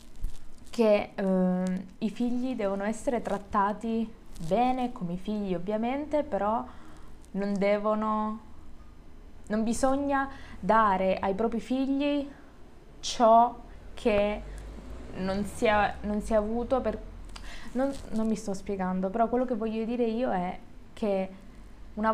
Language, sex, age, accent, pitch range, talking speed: Italian, female, 20-39, native, 190-235 Hz, 115 wpm